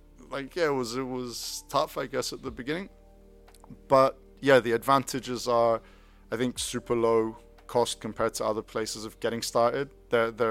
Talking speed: 175 wpm